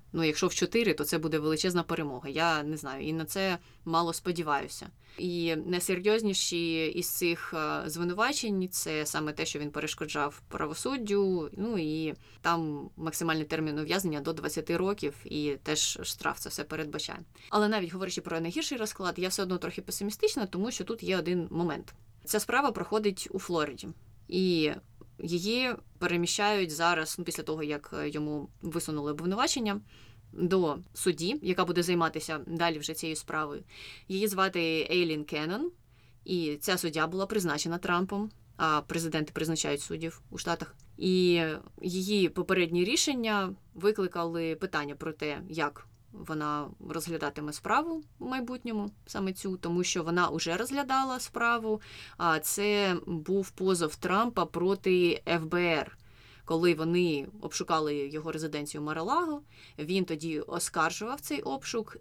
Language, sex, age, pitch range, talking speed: Ukrainian, female, 20-39, 155-195 Hz, 140 wpm